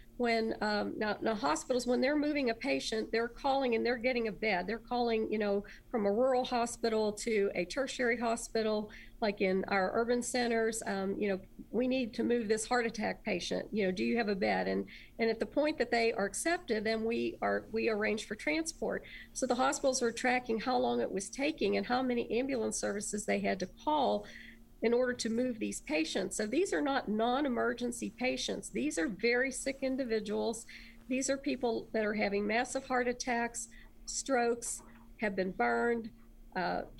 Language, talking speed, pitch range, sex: English, 195 wpm, 210-255 Hz, female